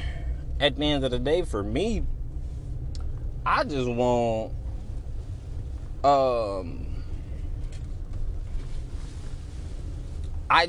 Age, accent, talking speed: 20-39, American, 75 wpm